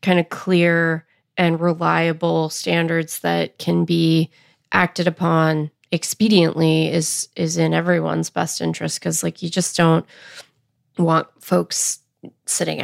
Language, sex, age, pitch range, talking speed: English, female, 20-39, 155-180 Hz, 120 wpm